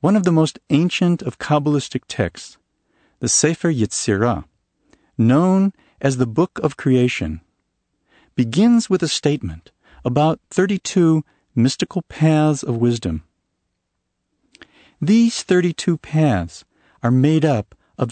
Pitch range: 100-155 Hz